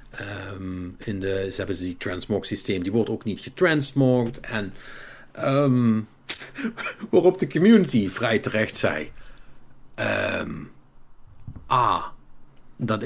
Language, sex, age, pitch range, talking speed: Dutch, male, 50-69, 115-145 Hz, 110 wpm